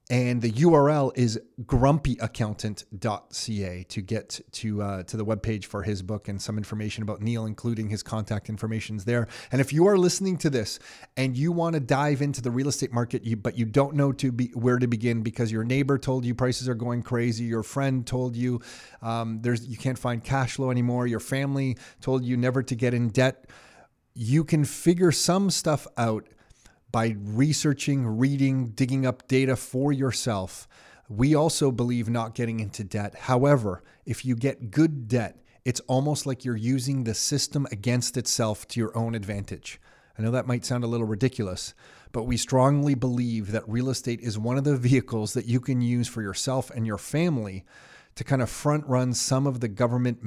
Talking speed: 190 wpm